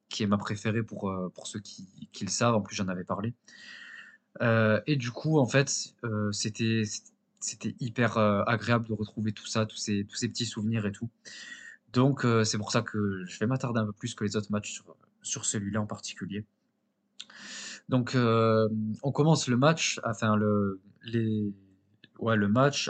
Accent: French